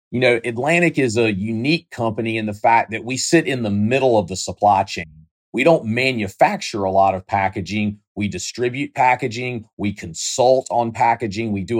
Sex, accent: male, American